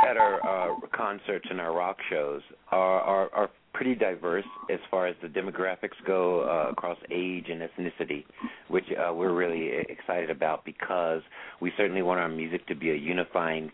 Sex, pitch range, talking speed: male, 90-110 Hz, 175 wpm